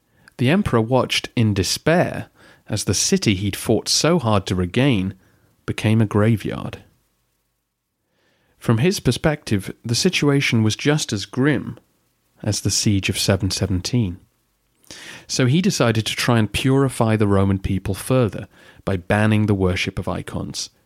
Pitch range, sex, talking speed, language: 100-125 Hz, male, 140 wpm, English